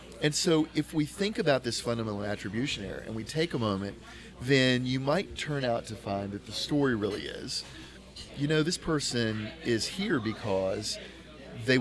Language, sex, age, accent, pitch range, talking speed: English, male, 40-59, American, 110-145 Hz, 180 wpm